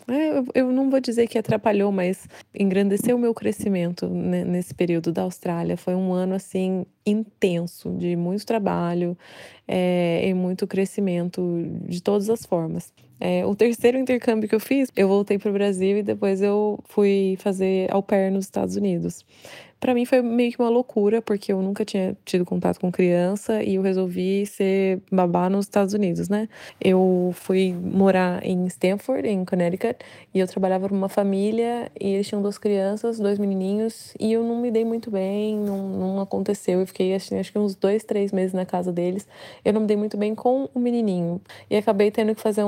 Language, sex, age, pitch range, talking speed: Portuguese, female, 20-39, 185-220 Hz, 185 wpm